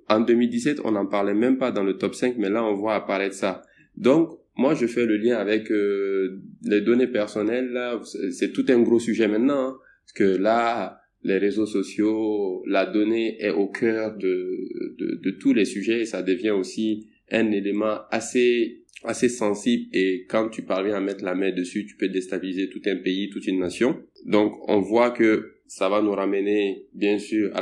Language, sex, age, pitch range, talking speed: French, male, 20-39, 100-115 Hz, 200 wpm